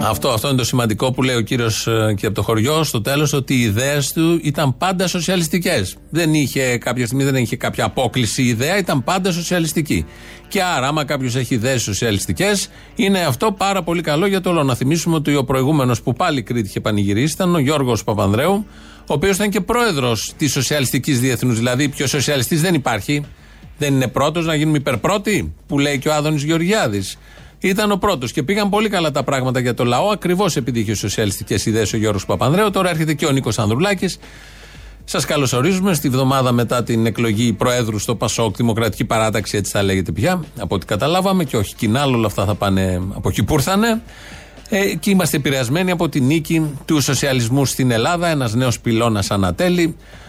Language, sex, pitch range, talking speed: Greek, male, 115-160 Hz, 180 wpm